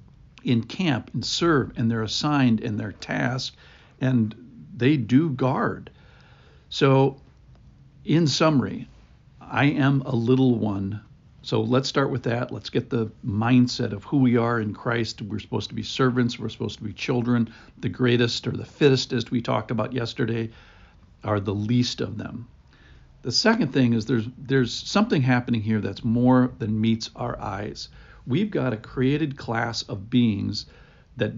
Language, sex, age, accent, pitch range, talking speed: English, male, 60-79, American, 110-135 Hz, 165 wpm